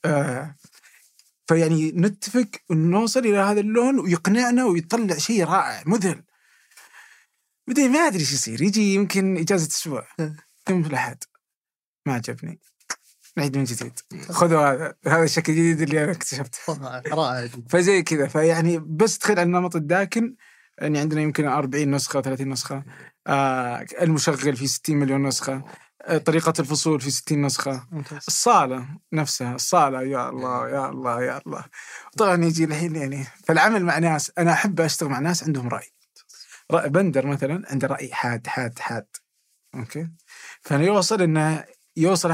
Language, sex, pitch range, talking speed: Arabic, male, 140-180 Hz, 140 wpm